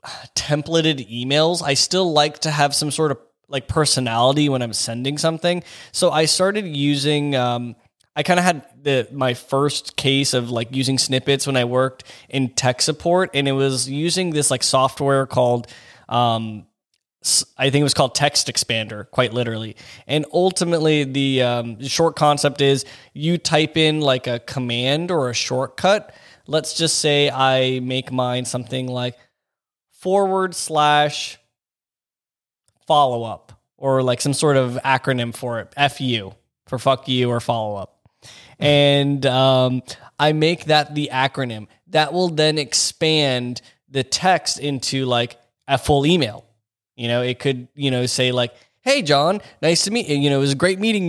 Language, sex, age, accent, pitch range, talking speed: English, male, 20-39, American, 125-150 Hz, 160 wpm